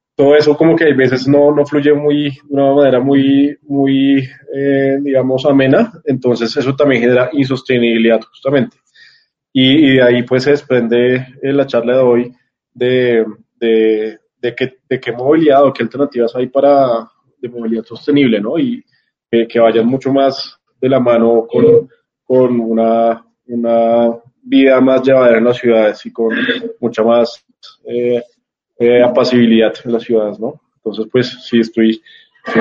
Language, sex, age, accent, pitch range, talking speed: Spanish, male, 20-39, Colombian, 115-140 Hz, 160 wpm